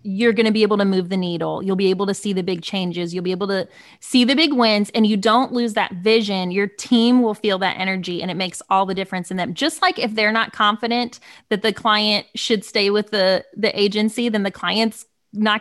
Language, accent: English, American